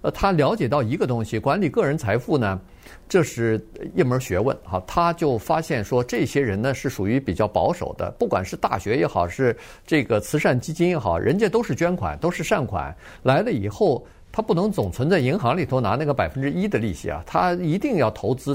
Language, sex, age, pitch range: Chinese, male, 50-69, 100-140 Hz